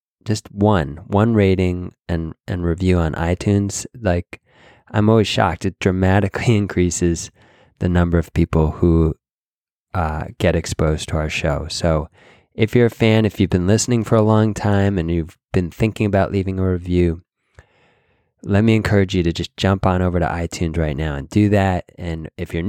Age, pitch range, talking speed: 20-39, 85-100 Hz, 175 wpm